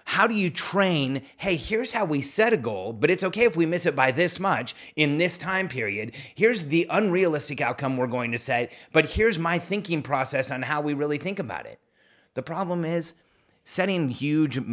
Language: English